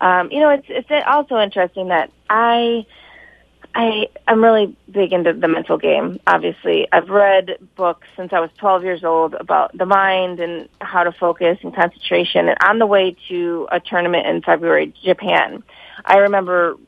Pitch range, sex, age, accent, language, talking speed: 175-205 Hz, female, 20-39, American, English, 170 wpm